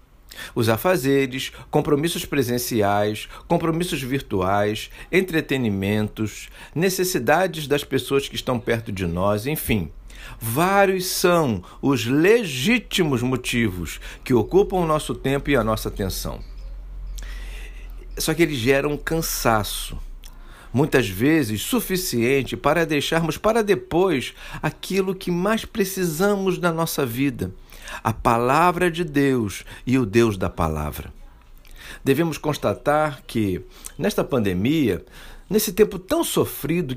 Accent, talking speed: Brazilian, 110 wpm